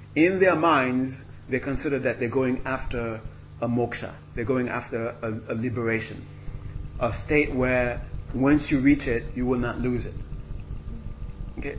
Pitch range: 105-135 Hz